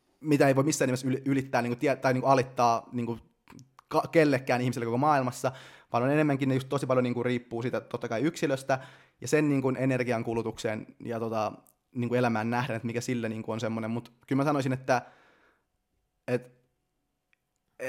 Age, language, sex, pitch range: 20-39, Finnish, male, 115-135 Hz